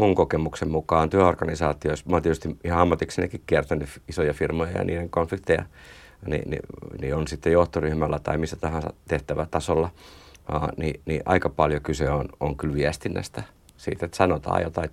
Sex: male